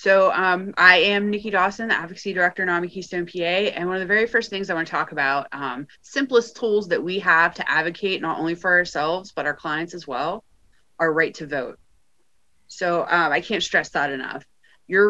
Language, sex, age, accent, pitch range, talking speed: English, female, 30-49, American, 165-200 Hz, 215 wpm